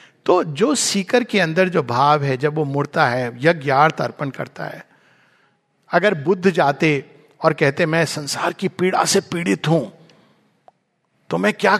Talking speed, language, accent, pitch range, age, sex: 160 wpm, Hindi, native, 160-225 Hz, 50-69, male